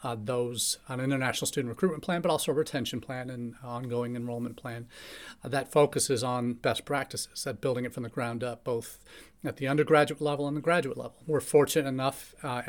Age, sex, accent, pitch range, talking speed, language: 40-59, male, American, 120-145 Hz, 200 wpm, English